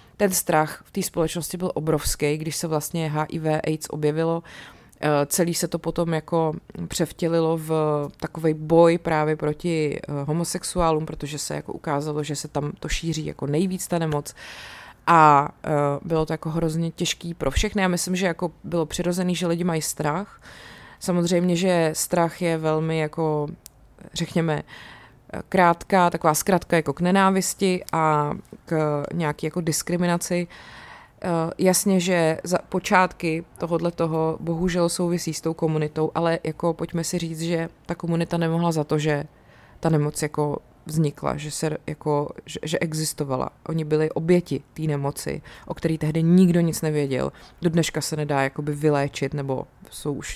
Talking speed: 150 wpm